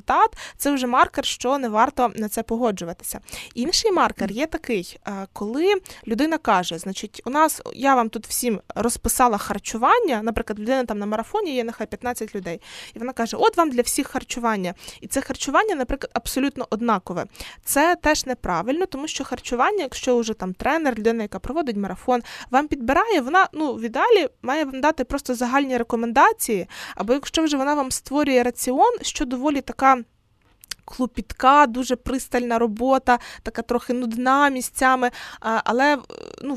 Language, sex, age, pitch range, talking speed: Ukrainian, female, 20-39, 235-295 Hz, 155 wpm